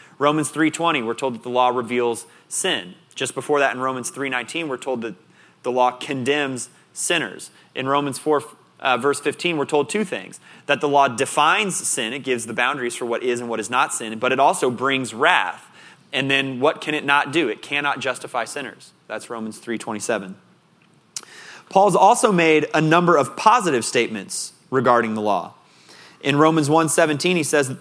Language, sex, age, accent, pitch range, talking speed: English, male, 30-49, American, 125-155 Hz, 175 wpm